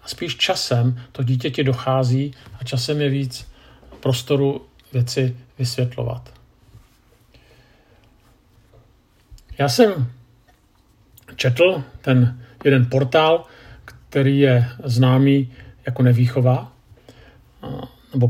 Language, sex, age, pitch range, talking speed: Czech, male, 50-69, 125-145 Hz, 80 wpm